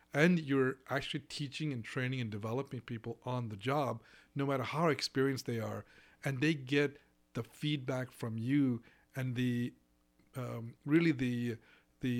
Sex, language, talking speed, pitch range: male, English, 155 wpm, 115-140 Hz